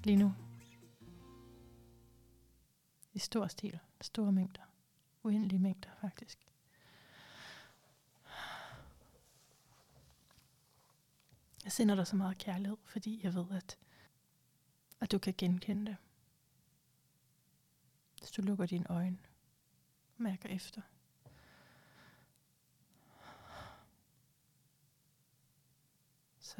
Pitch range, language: 150-200 Hz, Danish